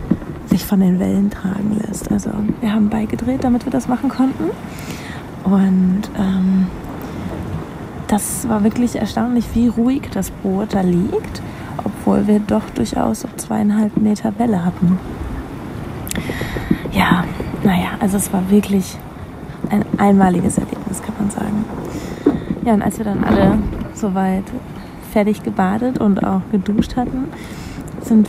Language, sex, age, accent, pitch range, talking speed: German, female, 20-39, German, 195-225 Hz, 130 wpm